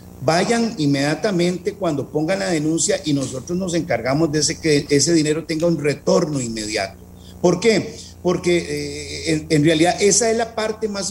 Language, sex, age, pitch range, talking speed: Spanish, male, 50-69, 145-185 Hz, 170 wpm